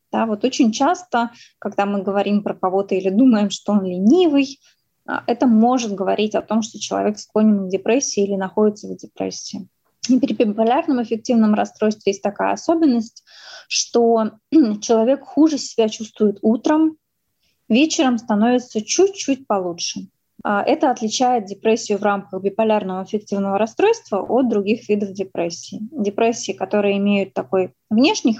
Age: 20-39